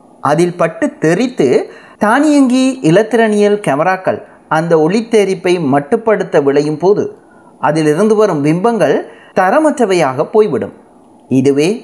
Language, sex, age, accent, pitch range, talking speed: Tamil, male, 30-49, native, 155-230 Hz, 95 wpm